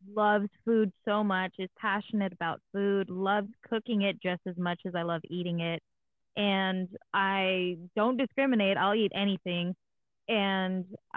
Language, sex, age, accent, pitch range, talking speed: English, female, 10-29, American, 180-215 Hz, 145 wpm